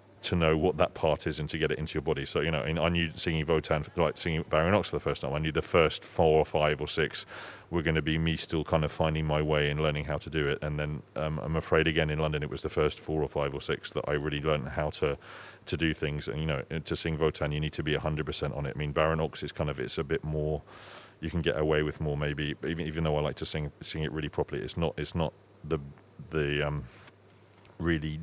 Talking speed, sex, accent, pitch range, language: 275 wpm, male, British, 75-85 Hz, Dutch